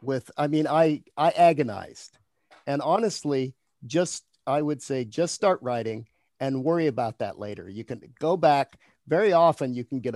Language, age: English, 50-69